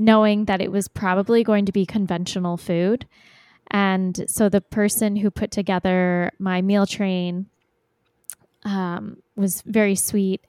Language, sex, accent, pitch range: English, female, American, 185-210 Hz